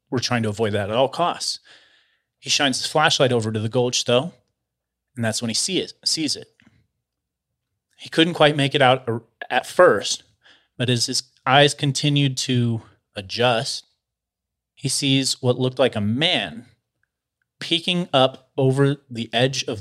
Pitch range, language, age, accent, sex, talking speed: 115-135 Hz, English, 30-49, American, male, 155 wpm